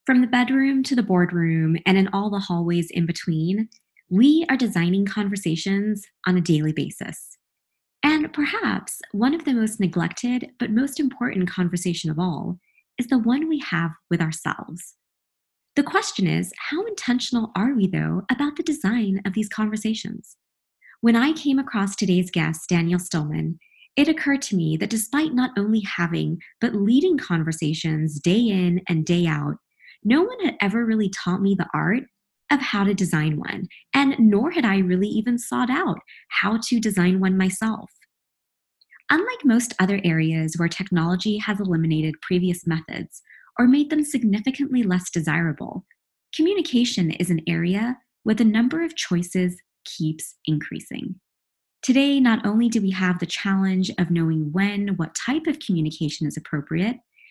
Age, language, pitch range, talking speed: 20-39, English, 175-250 Hz, 160 wpm